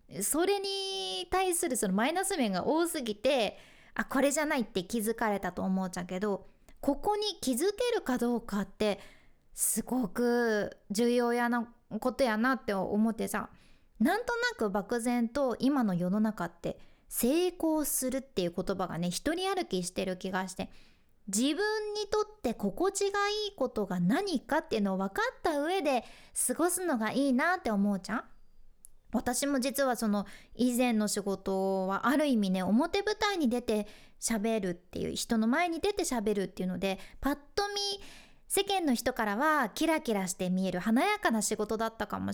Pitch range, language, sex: 205-310 Hz, Japanese, female